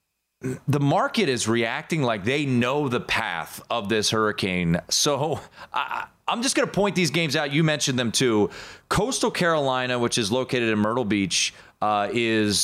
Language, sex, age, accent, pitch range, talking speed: English, male, 30-49, American, 110-180 Hz, 165 wpm